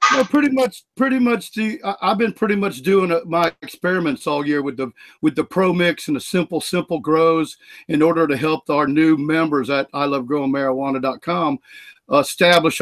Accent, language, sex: American, English, male